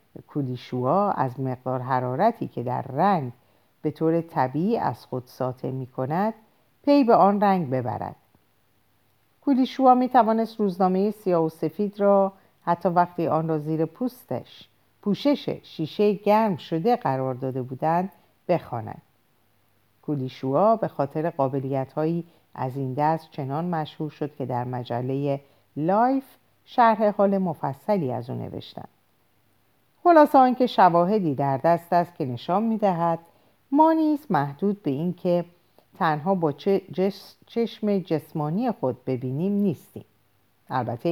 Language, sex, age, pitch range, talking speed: Persian, female, 50-69, 135-200 Hz, 125 wpm